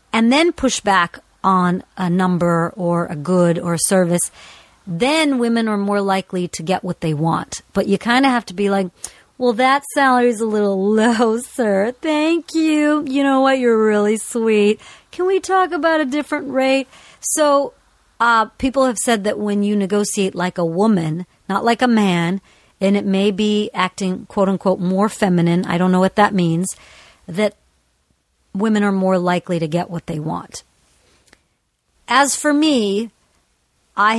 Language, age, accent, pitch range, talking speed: English, 50-69, American, 185-235 Hz, 175 wpm